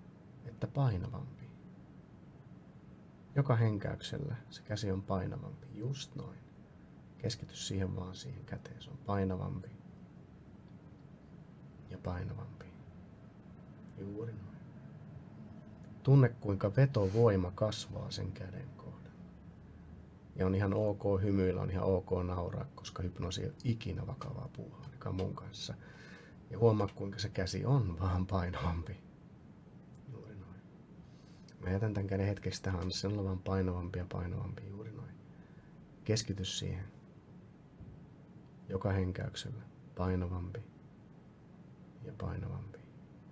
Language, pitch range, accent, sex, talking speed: Finnish, 95-130 Hz, native, male, 100 wpm